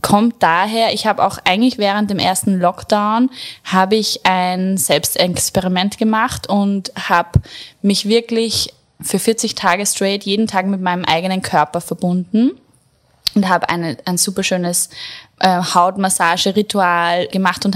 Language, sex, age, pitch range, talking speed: German, female, 10-29, 180-210 Hz, 130 wpm